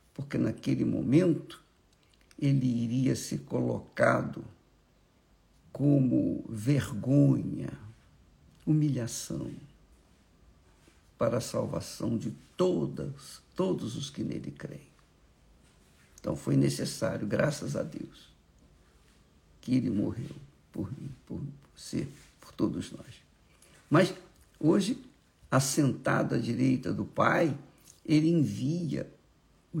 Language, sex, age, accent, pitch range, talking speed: Portuguese, male, 60-79, Brazilian, 90-155 Hz, 95 wpm